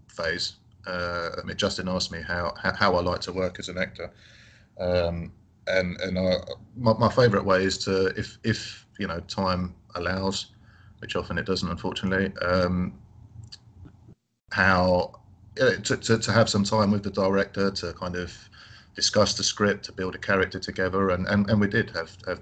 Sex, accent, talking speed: male, British, 180 wpm